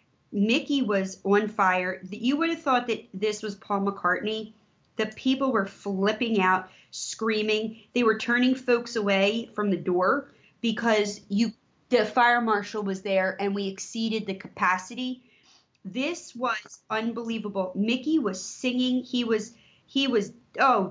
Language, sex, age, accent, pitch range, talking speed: English, female, 30-49, American, 190-230 Hz, 145 wpm